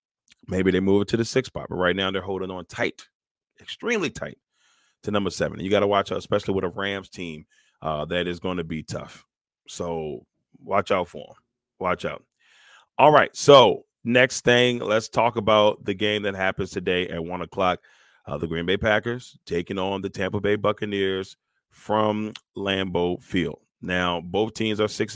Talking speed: 190 wpm